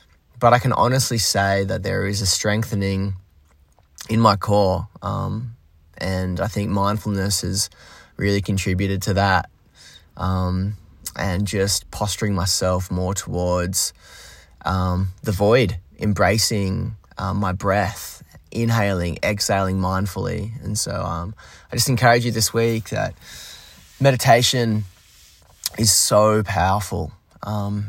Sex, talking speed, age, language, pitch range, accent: male, 120 wpm, 20-39, English, 95-110 Hz, Australian